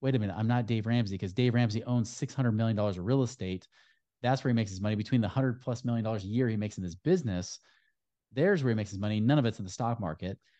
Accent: American